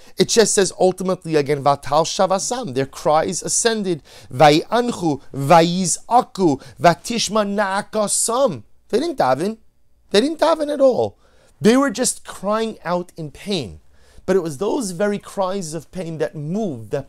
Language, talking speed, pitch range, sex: English, 120 wpm, 135-210 Hz, male